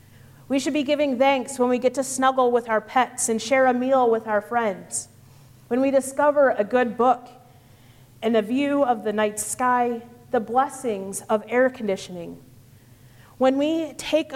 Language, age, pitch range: English, 30-49, 175-260 Hz